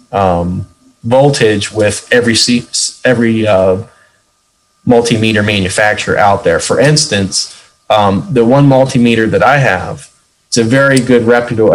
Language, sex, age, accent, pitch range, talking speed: English, male, 30-49, American, 100-120 Hz, 125 wpm